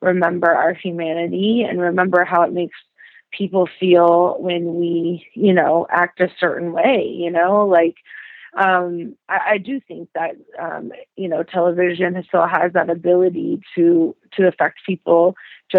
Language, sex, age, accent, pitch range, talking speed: English, female, 30-49, American, 170-195 Hz, 150 wpm